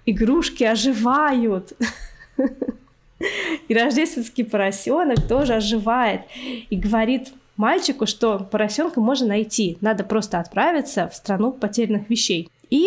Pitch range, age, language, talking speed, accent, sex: 205-255 Hz, 20-39, Russian, 105 wpm, native, female